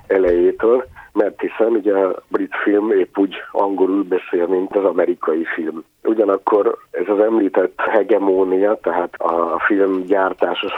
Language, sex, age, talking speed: Hungarian, male, 50-69, 135 wpm